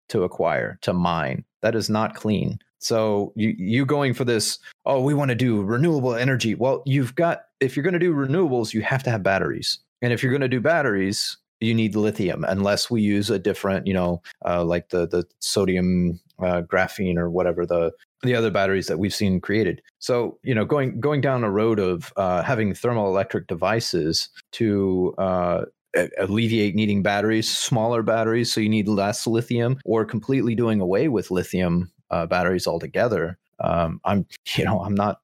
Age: 30-49